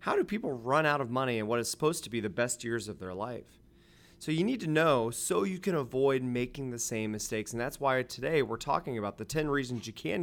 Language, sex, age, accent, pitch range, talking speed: English, male, 30-49, American, 120-155 Hz, 260 wpm